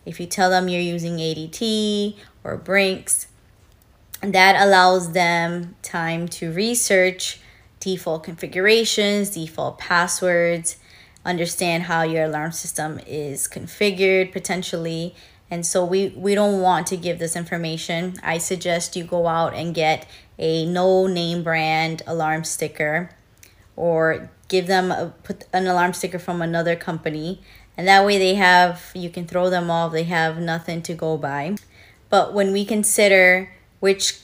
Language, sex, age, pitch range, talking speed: English, female, 20-39, 160-185 Hz, 145 wpm